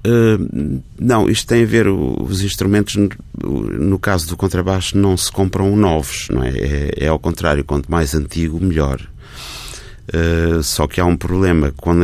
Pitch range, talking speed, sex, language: 75-95 Hz, 175 wpm, male, Portuguese